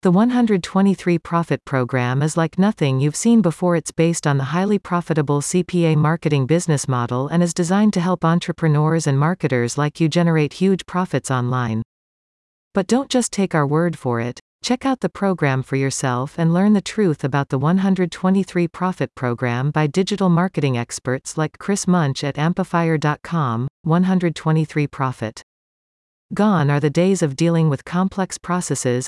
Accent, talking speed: American, 160 wpm